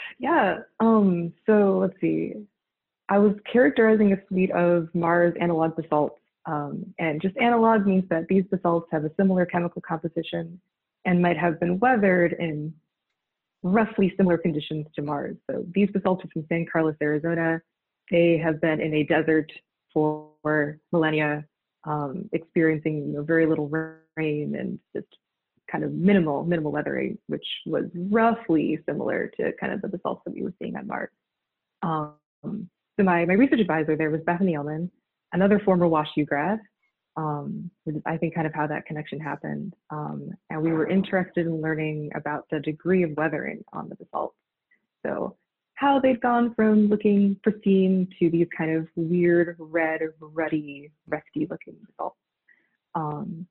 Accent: American